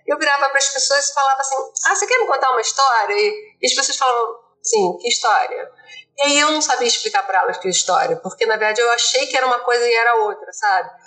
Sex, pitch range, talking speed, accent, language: female, 235-320 Hz, 245 wpm, Brazilian, Portuguese